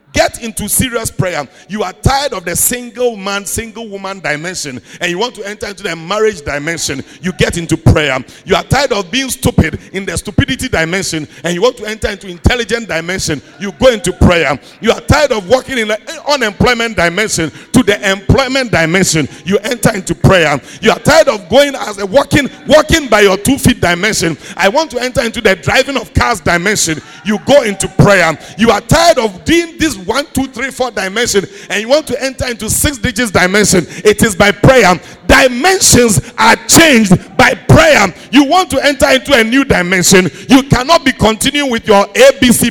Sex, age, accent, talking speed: male, 50-69, Nigerian, 195 wpm